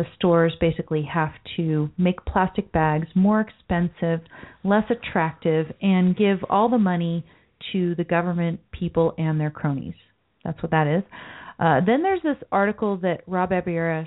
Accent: American